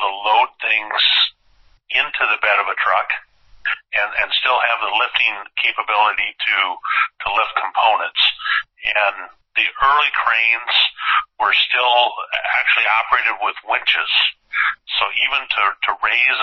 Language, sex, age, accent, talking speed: English, male, 50-69, American, 130 wpm